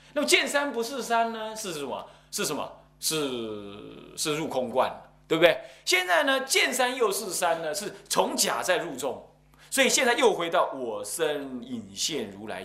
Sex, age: male, 30-49